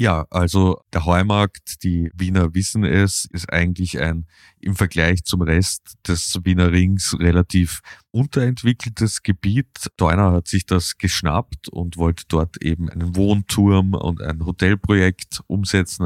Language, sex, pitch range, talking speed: German, male, 85-95 Hz, 135 wpm